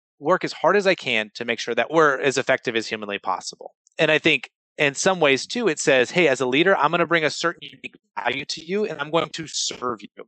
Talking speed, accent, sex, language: 265 wpm, American, male, English